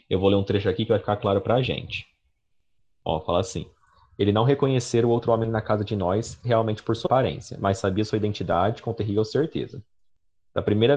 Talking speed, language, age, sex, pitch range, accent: 210 wpm, Portuguese, 20-39, male, 95-115 Hz, Brazilian